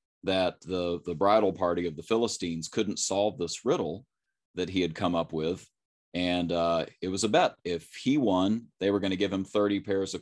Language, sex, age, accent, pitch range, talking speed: English, male, 30-49, American, 85-100 Hz, 210 wpm